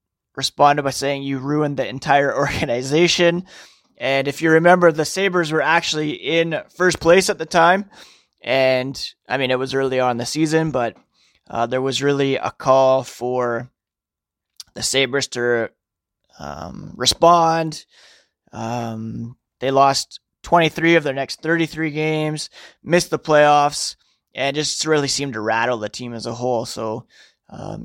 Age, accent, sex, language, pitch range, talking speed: 20-39, American, male, English, 125-160 Hz, 150 wpm